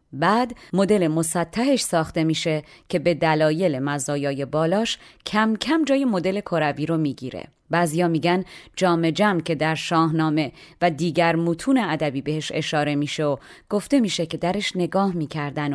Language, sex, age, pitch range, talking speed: Persian, female, 30-49, 155-205 Hz, 150 wpm